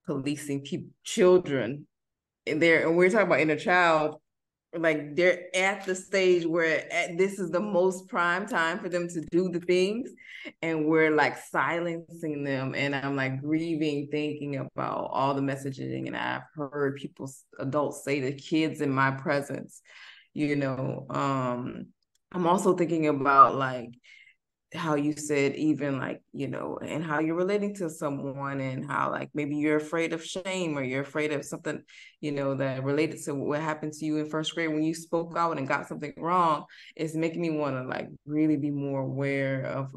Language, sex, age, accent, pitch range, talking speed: English, female, 20-39, American, 135-165 Hz, 180 wpm